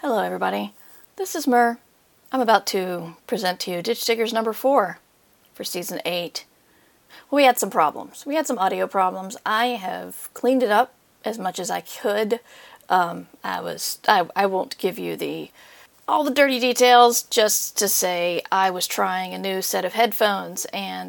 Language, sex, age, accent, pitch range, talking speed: English, female, 40-59, American, 190-250 Hz, 175 wpm